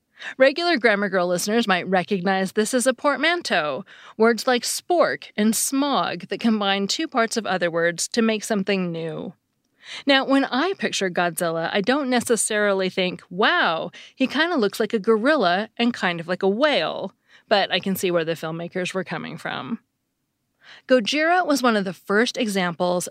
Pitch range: 180-235 Hz